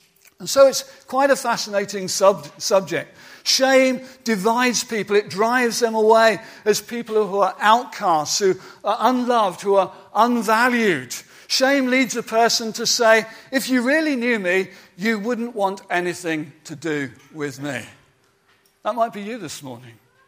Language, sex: English, male